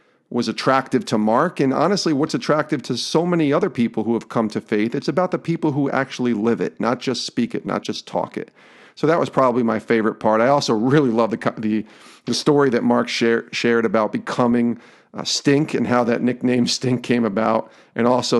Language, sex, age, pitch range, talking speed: English, male, 40-59, 110-135 Hz, 215 wpm